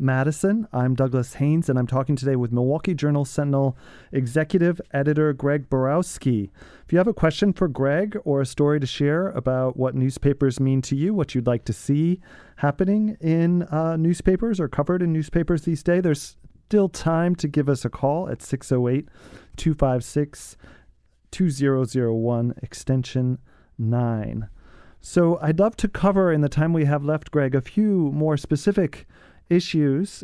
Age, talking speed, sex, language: 30-49, 155 wpm, male, English